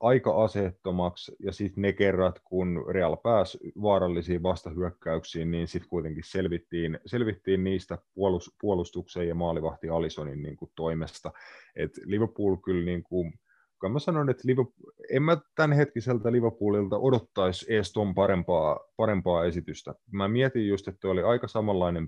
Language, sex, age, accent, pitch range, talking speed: Finnish, male, 30-49, native, 80-100 Hz, 135 wpm